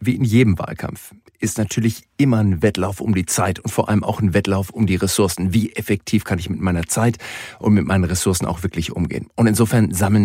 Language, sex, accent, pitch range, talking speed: German, male, German, 100-115 Hz, 220 wpm